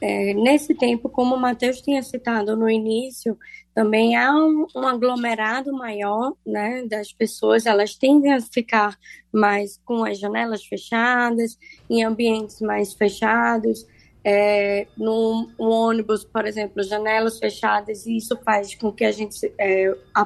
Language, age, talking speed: Portuguese, 10-29, 145 wpm